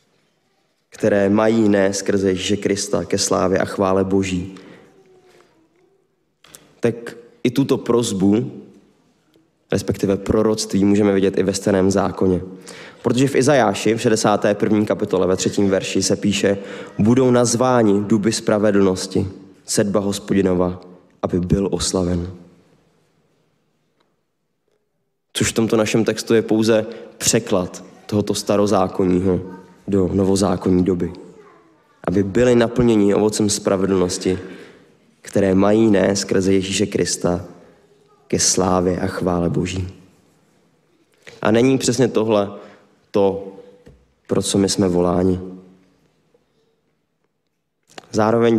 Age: 20-39